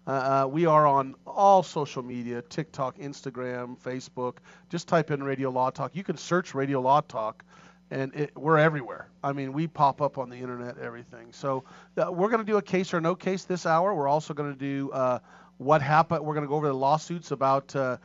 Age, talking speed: 40-59, 210 wpm